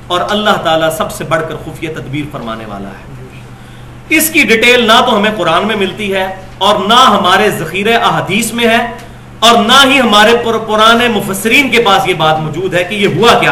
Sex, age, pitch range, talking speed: male, 40-59, 160-225 Hz, 200 wpm